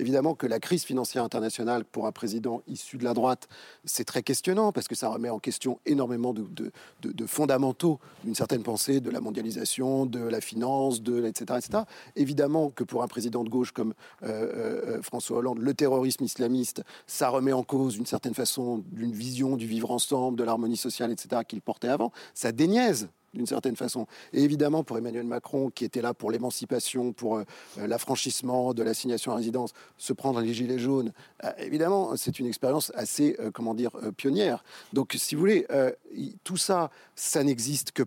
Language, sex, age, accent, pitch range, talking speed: French, male, 40-59, French, 120-150 Hz, 195 wpm